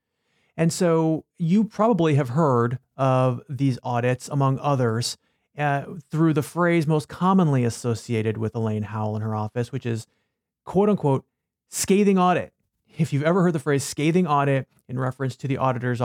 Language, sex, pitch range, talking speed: English, male, 125-160 Hz, 160 wpm